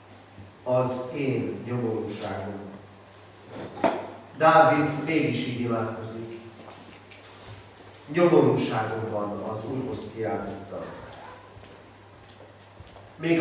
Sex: male